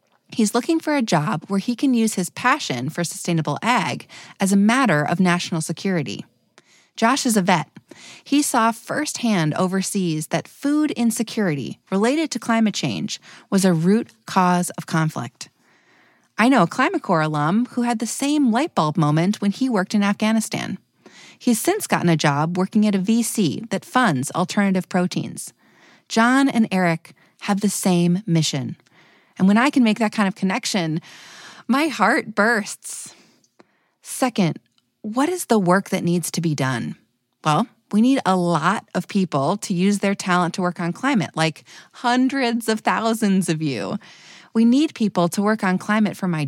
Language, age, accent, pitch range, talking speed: English, 30-49, American, 175-230 Hz, 170 wpm